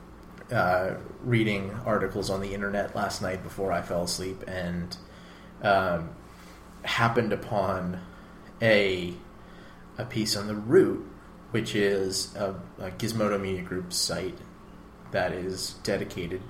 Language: English